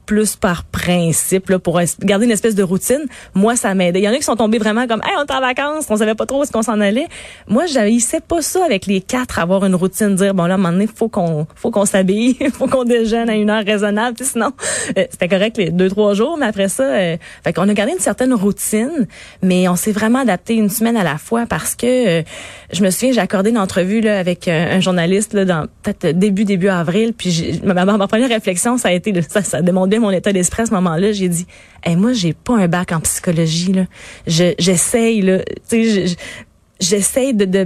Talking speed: 240 wpm